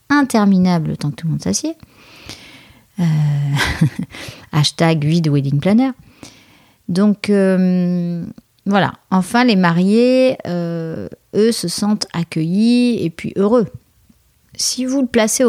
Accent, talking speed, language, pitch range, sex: French, 110 wpm, French, 165-220 Hz, female